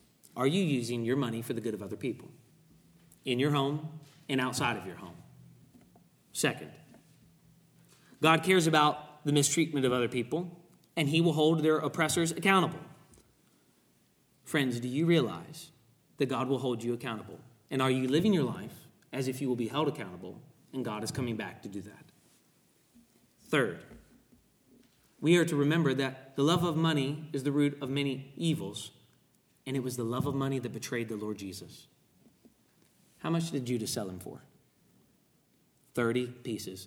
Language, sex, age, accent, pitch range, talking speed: English, male, 30-49, American, 125-155 Hz, 170 wpm